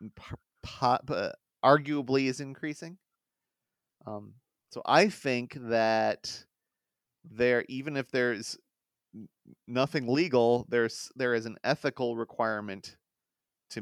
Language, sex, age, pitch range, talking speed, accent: English, male, 30-49, 105-130 Hz, 95 wpm, American